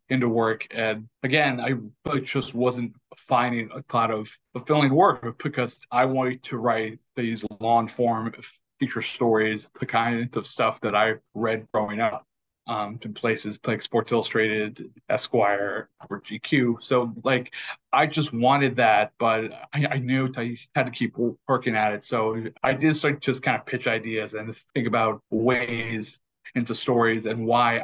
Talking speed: 160 wpm